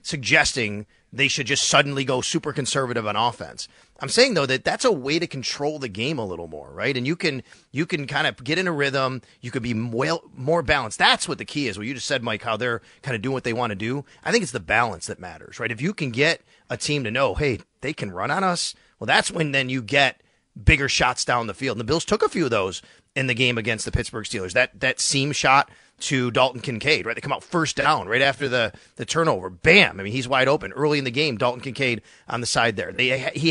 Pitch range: 120-155 Hz